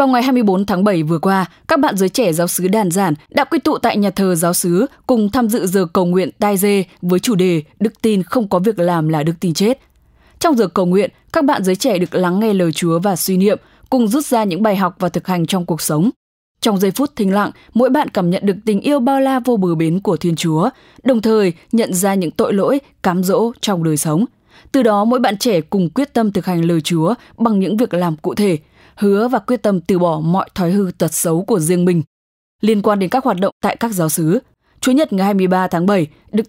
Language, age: English, 10-29